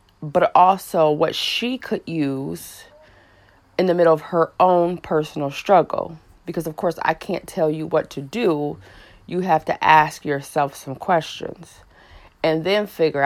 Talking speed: 155 wpm